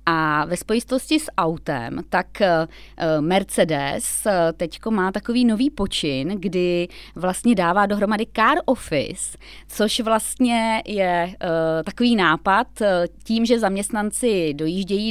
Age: 20-39